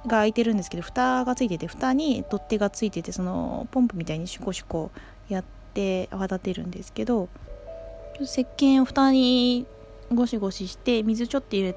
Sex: female